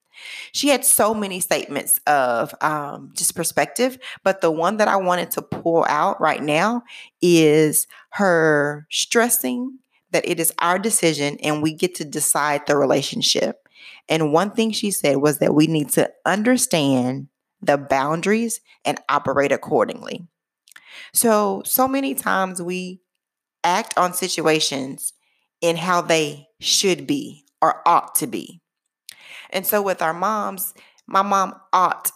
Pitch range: 155-210 Hz